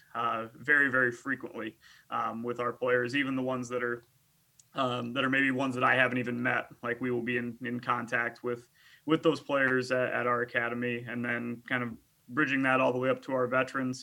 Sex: male